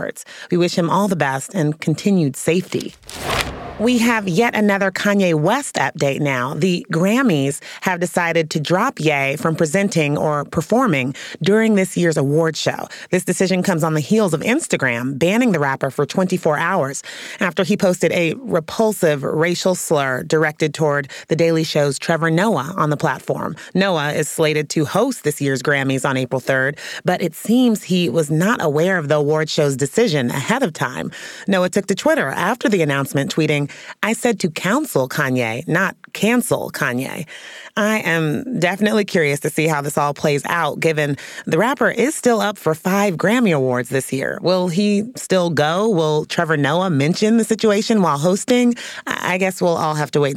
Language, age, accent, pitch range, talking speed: English, 30-49, American, 150-195 Hz, 175 wpm